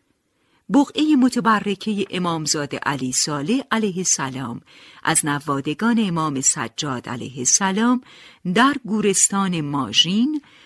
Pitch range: 160-245 Hz